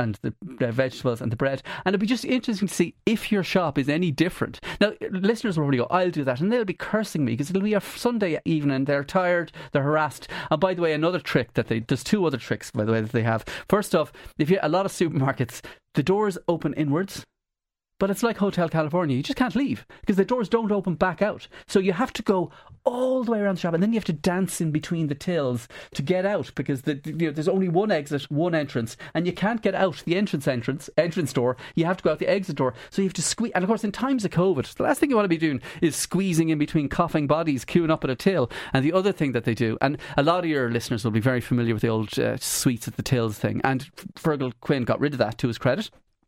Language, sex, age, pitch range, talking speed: English, male, 30-49, 130-190 Hz, 270 wpm